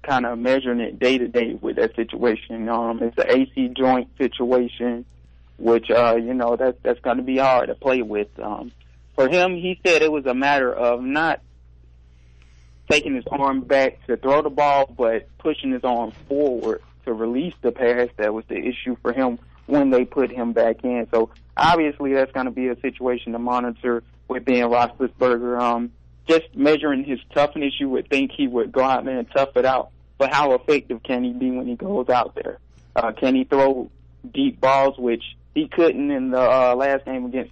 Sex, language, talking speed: male, English, 200 wpm